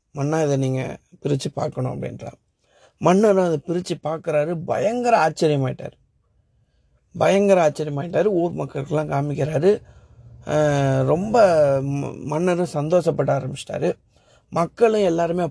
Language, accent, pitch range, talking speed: Tamil, native, 150-195 Hz, 95 wpm